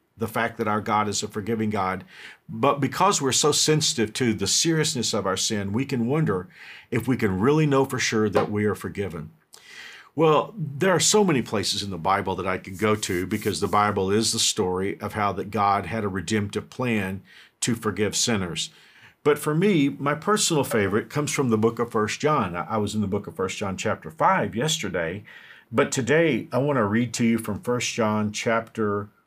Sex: male